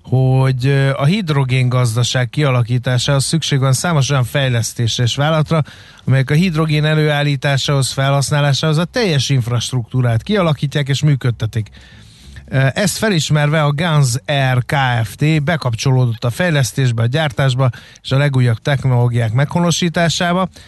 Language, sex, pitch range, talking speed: Hungarian, male, 125-150 Hz, 115 wpm